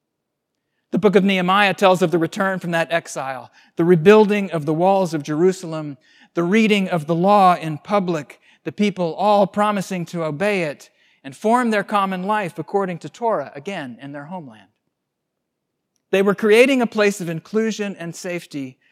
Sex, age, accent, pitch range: male, 40-59, American, 150-190 Hz